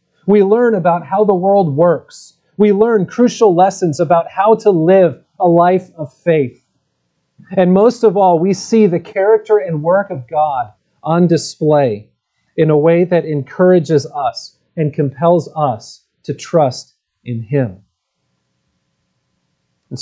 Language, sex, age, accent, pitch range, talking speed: English, male, 40-59, American, 145-185 Hz, 140 wpm